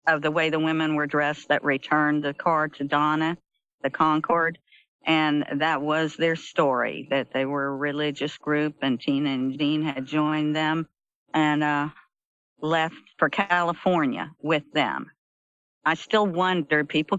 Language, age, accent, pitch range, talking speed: English, 50-69, American, 145-165 Hz, 155 wpm